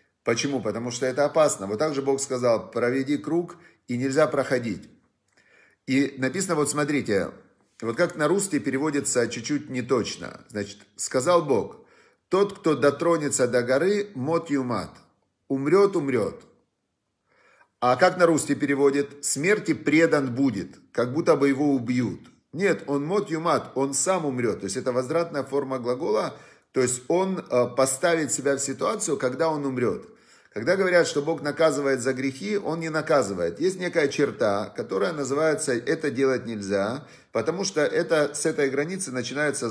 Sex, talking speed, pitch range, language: male, 145 wpm, 125-160 Hz, Russian